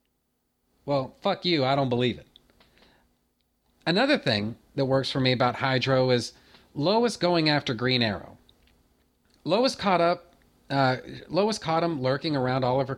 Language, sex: English, male